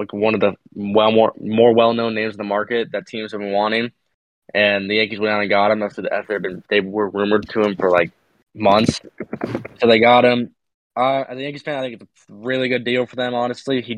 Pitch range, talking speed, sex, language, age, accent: 105-120 Hz, 245 wpm, male, English, 20-39, American